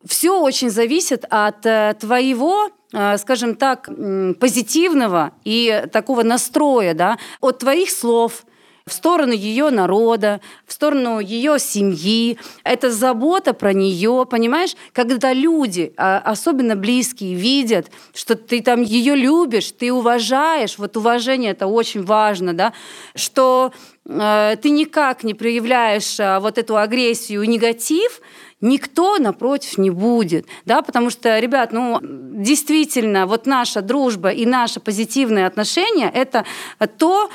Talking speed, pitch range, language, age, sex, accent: 120 wpm, 220-280 Hz, Russian, 30-49, female, native